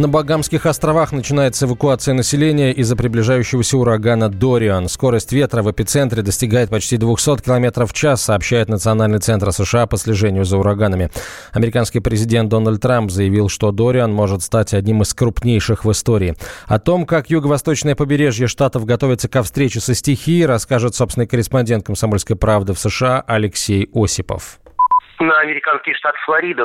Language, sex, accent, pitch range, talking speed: Russian, male, native, 110-140 Hz, 150 wpm